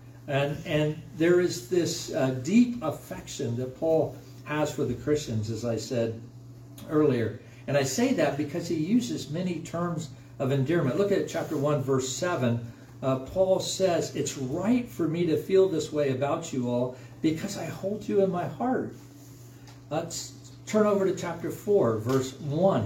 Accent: American